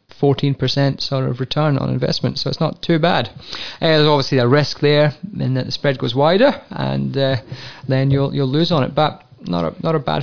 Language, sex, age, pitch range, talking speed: English, male, 30-49, 120-140 Hz, 225 wpm